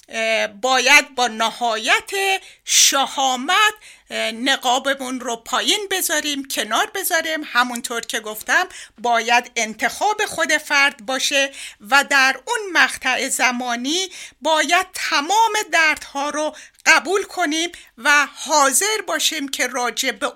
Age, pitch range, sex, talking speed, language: 50-69, 245-355 Hz, female, 105 wpm, Persian